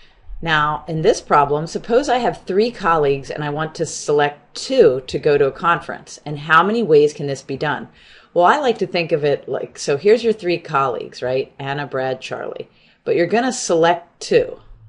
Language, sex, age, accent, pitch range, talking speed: English, female, 40-59, American, 130-175 Hz, 200 wpm